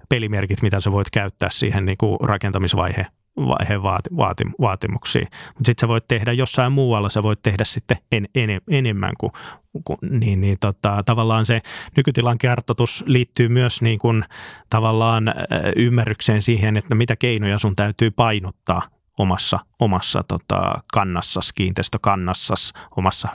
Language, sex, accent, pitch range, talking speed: Finnish, male, native, 100-120 Hz, 135 wpm